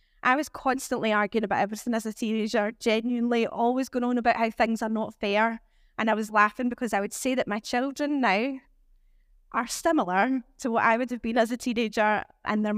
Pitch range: 230-275 Hz